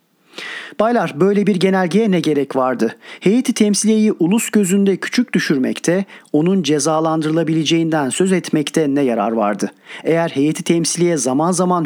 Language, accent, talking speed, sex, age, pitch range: Turkish, native, 125 wpm, male, 40-59, 145-190 Hz